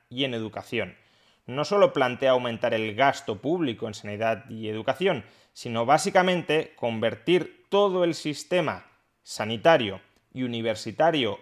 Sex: male